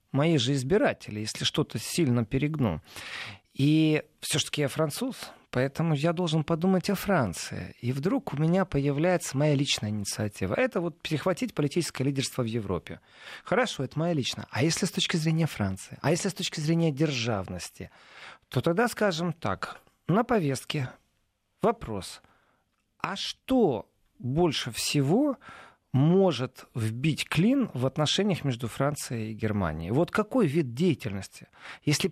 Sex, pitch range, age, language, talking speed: male, 125-185 Hz, 40-59, Russian, 140 wpm